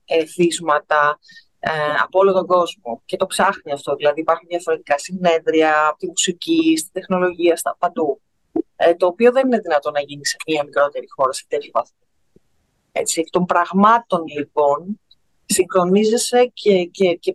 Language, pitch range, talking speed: Greek, 170-230 Hz, 155 wpm